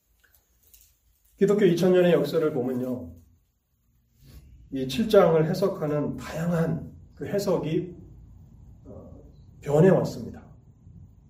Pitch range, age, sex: 120-170 Hz, 40-59, male